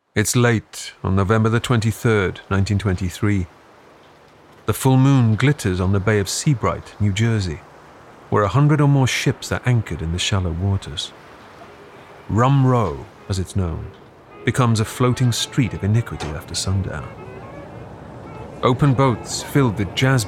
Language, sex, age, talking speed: English, male, 40-59, 140 wpm